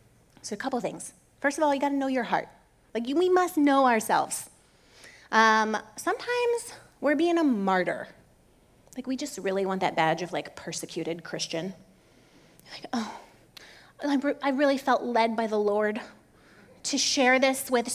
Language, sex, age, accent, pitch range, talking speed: English, female, 30-49, American, 215-290 Hz, 165 wpm